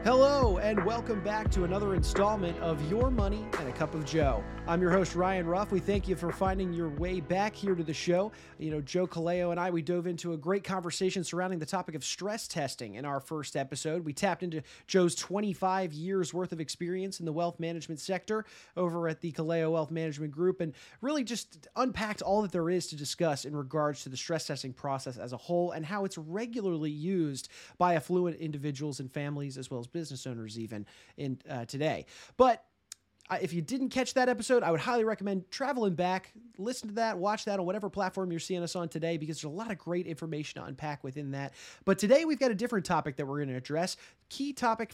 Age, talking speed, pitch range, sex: 30-49, 220 wpm, 150-195 Hz, male